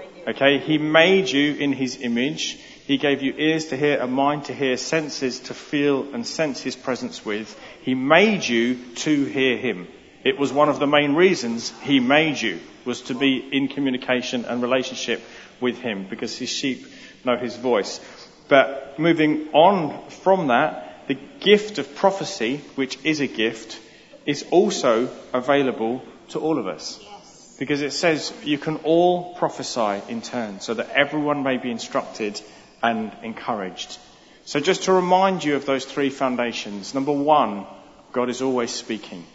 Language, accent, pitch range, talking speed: English, British, 125-150 Hz, 165 wpm